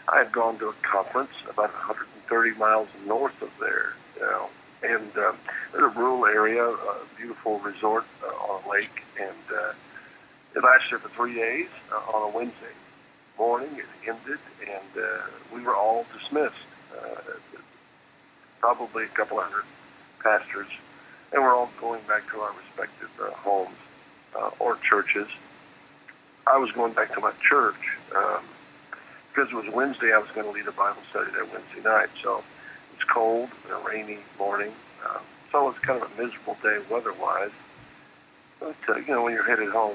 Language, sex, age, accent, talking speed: English, male, 50-69, American, 170 wpm